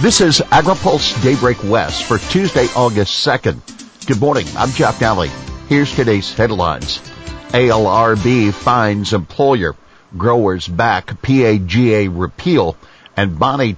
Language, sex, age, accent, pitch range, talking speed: English, male, 50-69, American, 95-125 Hz, 115 wpm